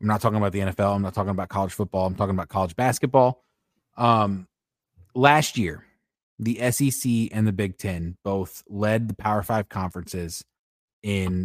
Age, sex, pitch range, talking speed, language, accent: 20-39, male, 95-115 Hz, 175 wpm, English, American